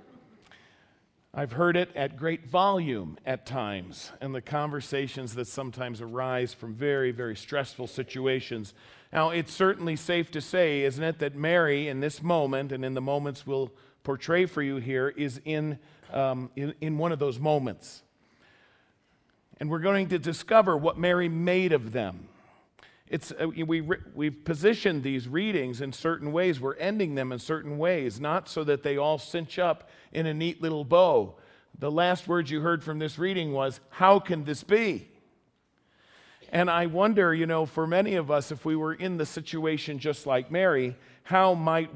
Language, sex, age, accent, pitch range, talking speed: English, male, 50-69, American, 135-175 Hz, 170 wpm